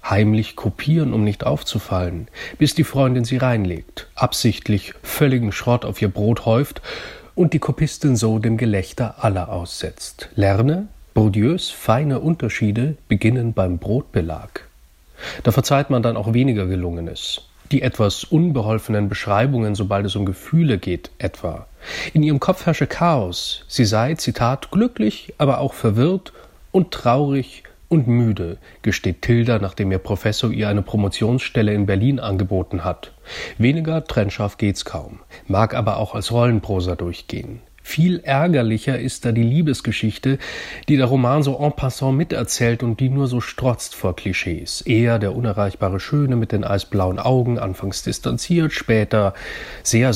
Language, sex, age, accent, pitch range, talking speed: German, male, 30-49, German, 105-135 Hz, 140 wpm